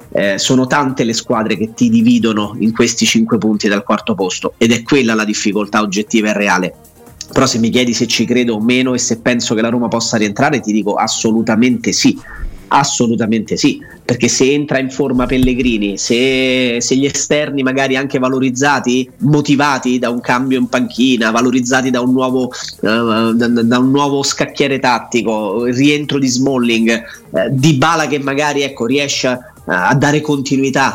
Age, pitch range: 30-49, 115-135 Hz